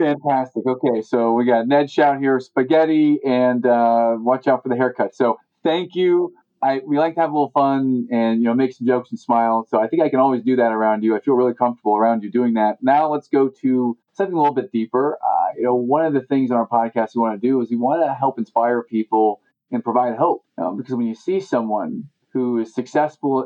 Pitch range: 115-145 Hz